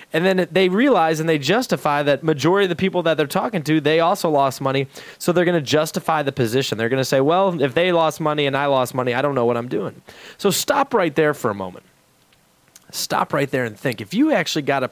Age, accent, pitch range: 20-39, American, 140-185 Hz